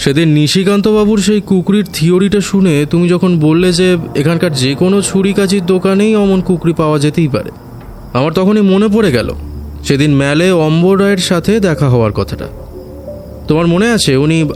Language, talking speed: Bengali, 150 wpm